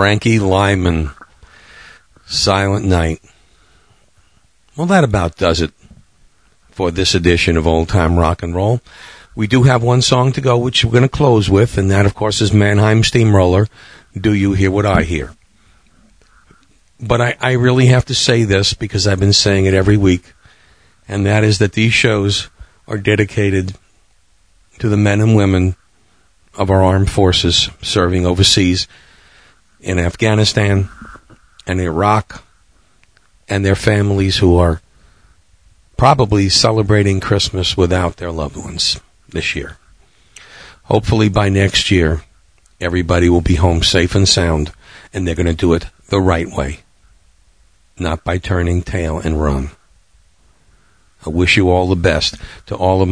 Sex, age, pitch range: male, 50-69, 85-105 Hz